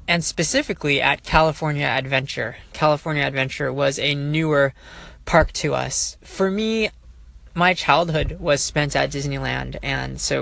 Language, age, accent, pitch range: English, 20-39, American, 135-160 Hz